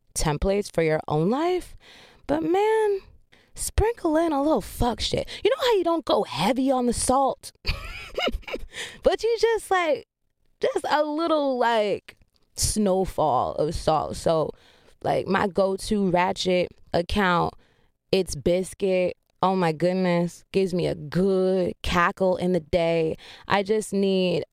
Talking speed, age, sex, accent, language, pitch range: 135 wpm, 20-39, female, American, English, 165-260 Hz